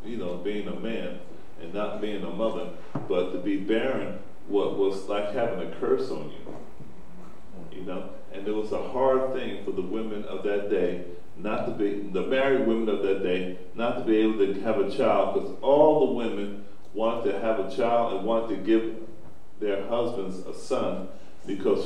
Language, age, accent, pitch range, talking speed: English, 50-69, American, 100-130 Hz, 195 wpm